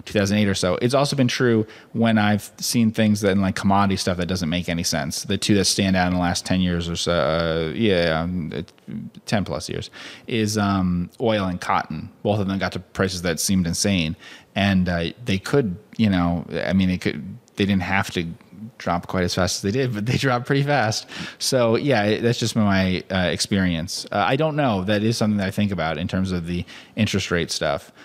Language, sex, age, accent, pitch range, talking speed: English, male, 30-49, American, 95-115 Hz, 225 wpm